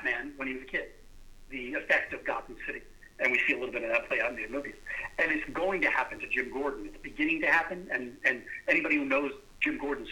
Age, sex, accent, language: 50-69, male, American, English